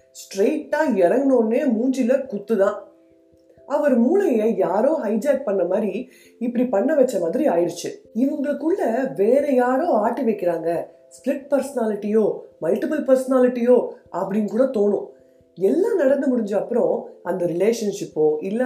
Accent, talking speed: native, 65 wpm